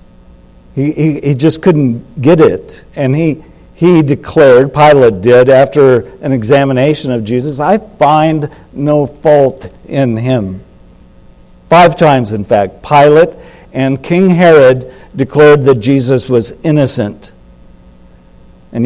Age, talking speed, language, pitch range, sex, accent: 60-79, 120 wpm, English, 110-145 Hz, male, American